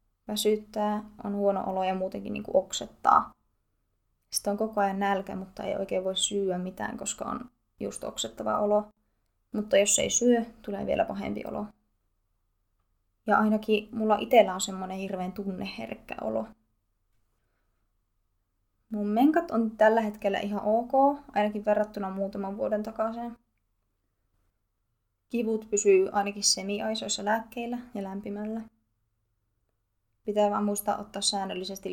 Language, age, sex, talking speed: Finnish, 20-39, female, 120 wpm